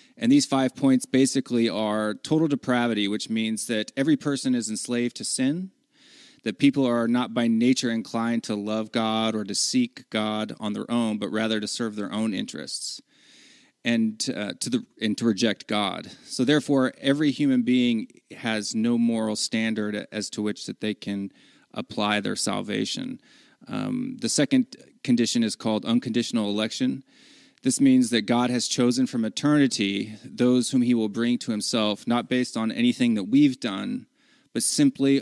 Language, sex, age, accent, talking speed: English, male, 30-49, American, 165 wpm